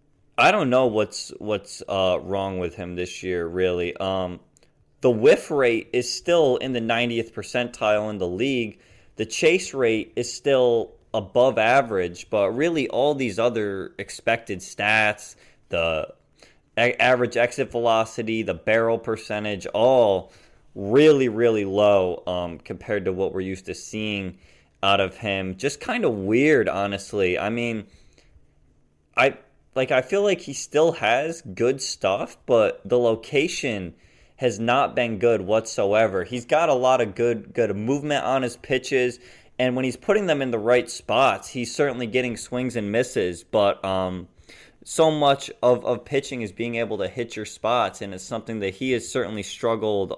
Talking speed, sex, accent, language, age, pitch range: 160 wpm, male, American, English, 20-39, 95-125 Hz